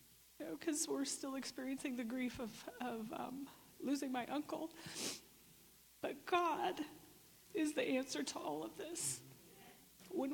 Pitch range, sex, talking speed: 210-275 Hz, female, 130 wpm